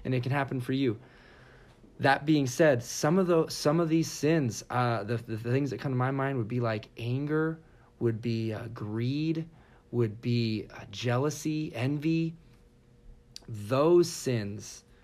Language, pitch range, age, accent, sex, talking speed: English, 120-145 Hz, 30-49, American, male, 160 wpm